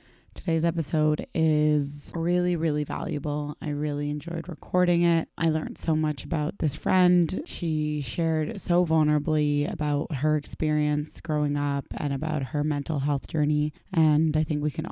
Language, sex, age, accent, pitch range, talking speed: English, female, 20-39, American, 150-170 Hz, 155 wpm